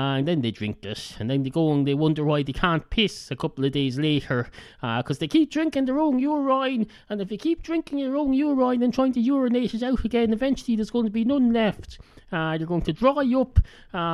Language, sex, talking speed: English, male, 245 wpm